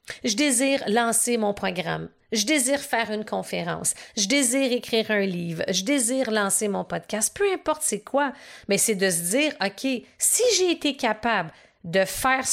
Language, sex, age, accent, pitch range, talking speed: French, female, 40-59, Canadian, 180-250 Hz, 170 wpm